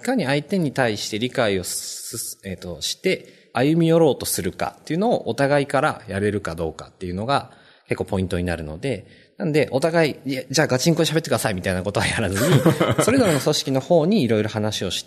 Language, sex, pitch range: Japanese, male, 90-150 Hz